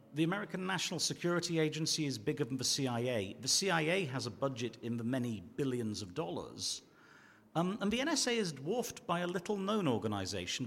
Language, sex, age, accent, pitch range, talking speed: Italian, male, 50-69, British, 125-175 Hz, 175 wpm